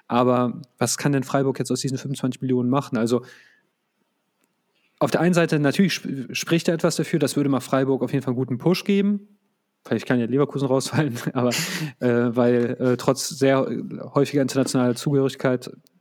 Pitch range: 120-135 Hz